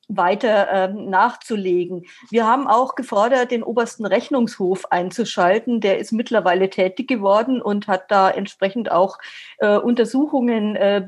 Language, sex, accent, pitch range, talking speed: German, female, German, 205-250 Hz, 130 wpm